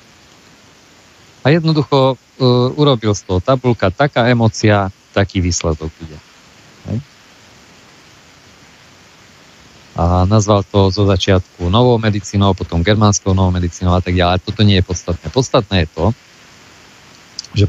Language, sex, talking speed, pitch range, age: Slovak, male, 110 wpm, 95-115 Hz, 40-59